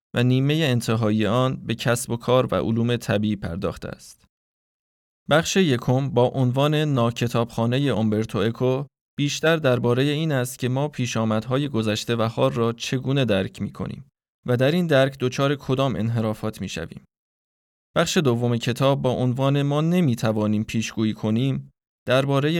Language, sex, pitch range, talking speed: Persian, male, 115-140 Hz, 140 wpm